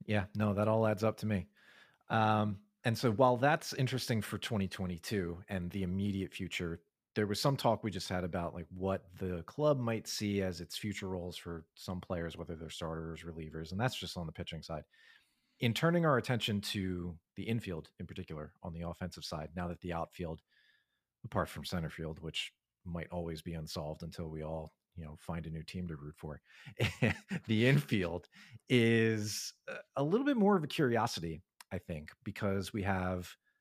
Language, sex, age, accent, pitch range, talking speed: English, male, 40-59, American, 85-110 Hz, 185 wpm